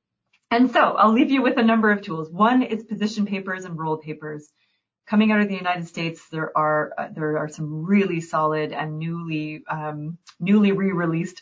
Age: 30-49